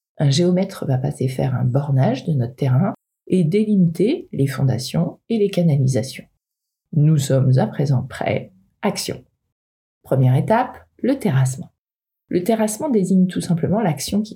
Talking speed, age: 140 wpm, 40-59